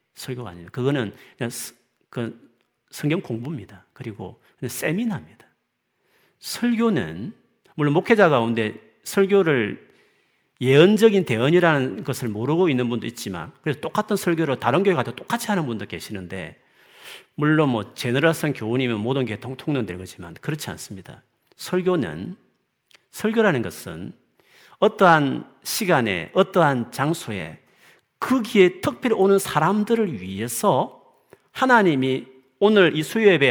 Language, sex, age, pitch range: Korean, male, 40-59, 125-215 Hz